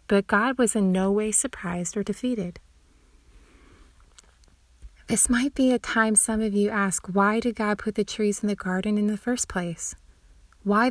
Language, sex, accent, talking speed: English, female, American, 175 wpm